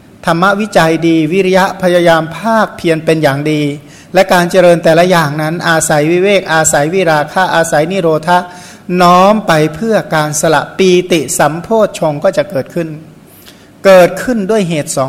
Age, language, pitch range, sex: 60-79, Thai, 155-180 Hz, male